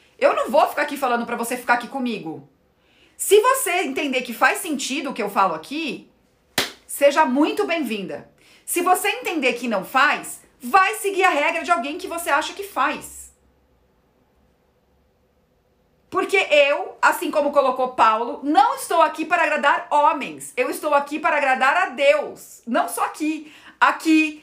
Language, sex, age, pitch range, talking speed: Portuguese, female, 40-59, 250-345 Hz, 160 wpm